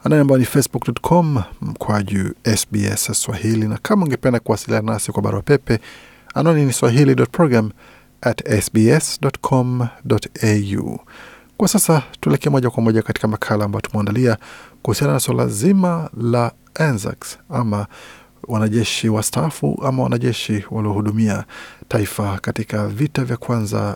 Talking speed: 115 wpm